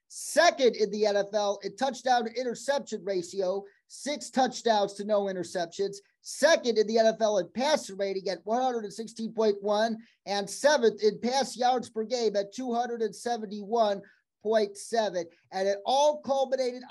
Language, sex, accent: English, male, American